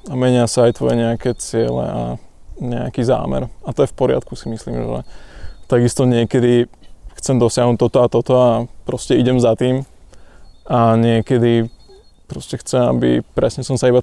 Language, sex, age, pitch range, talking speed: Slovak, male, 20-39, 115-130 Hz, 165 wpm